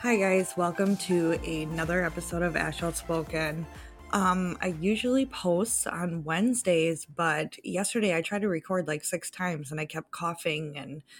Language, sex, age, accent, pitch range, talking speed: English, female, 20-39, American, 160-195 Hz, 155 wpm